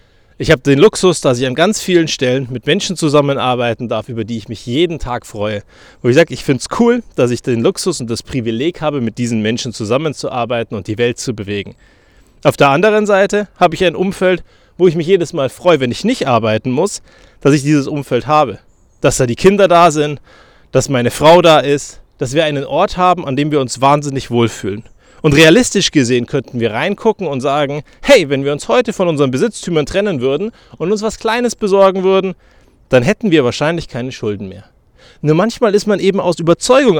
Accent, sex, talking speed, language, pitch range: German, male, 210 wpm, German, 120-180 Hz